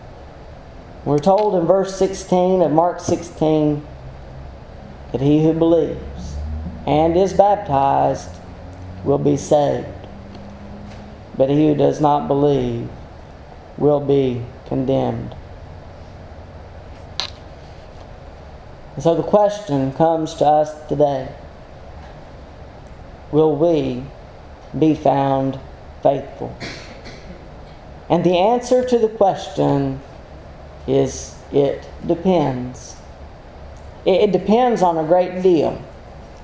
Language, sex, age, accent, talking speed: English, male, 40-59, American, 90 wpm